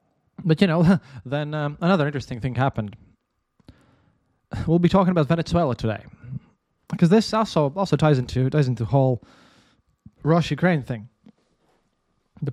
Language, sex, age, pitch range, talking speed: English, male, 20-39, 120-160 Hz, 135 wpm